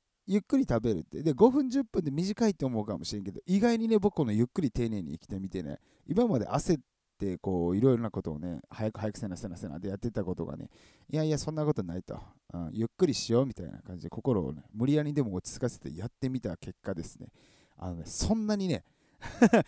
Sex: male